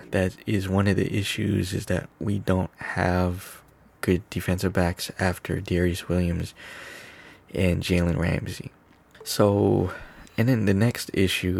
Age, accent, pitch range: 20-39, American, 90-100 Hz